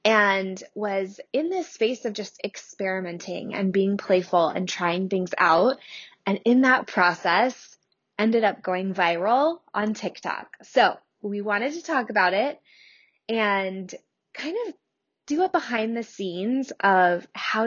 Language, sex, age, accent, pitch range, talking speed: English, female, 20-39, American, 190-235 Hz, 145 wpm